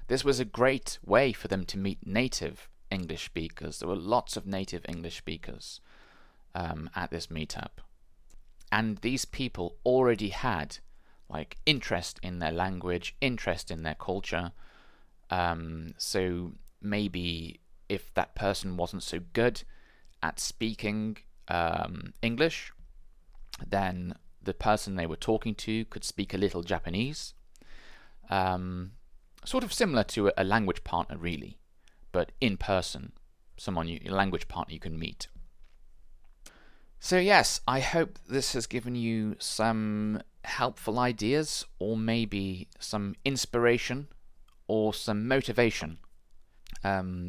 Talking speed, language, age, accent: 130 wpm, English, 20-39, British